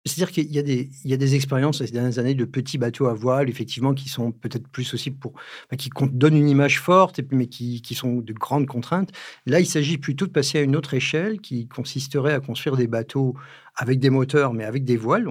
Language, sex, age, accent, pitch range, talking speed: French, male, 50-69, French, 120-145 Hz, 235 wpm